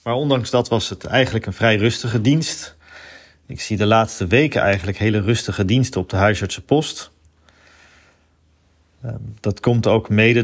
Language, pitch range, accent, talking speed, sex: Dutch, 95-115 Hz, Dutch, 150 wpm, male